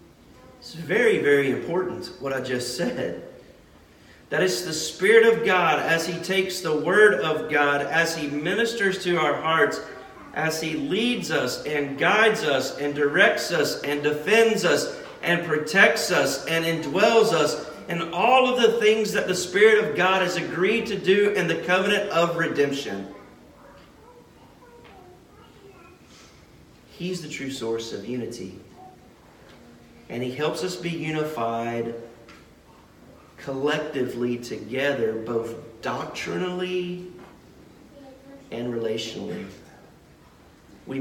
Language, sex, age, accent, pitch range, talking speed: English, male, 40-59, American, 135-180 Hz, 125 wpm